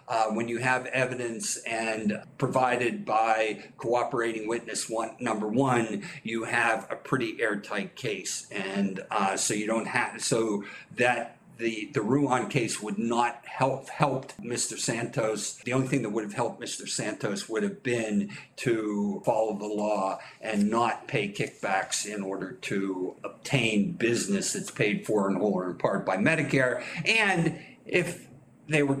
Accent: American